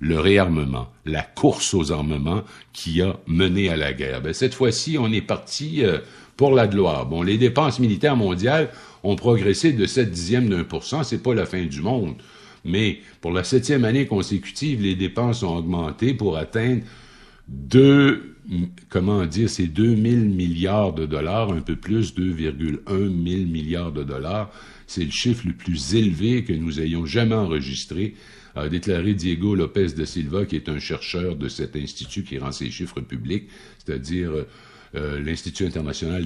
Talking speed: 170 wpm